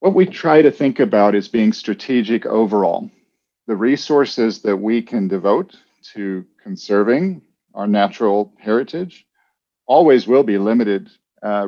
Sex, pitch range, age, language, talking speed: male, 110-150 Hz, 50-69, English, 135 wpm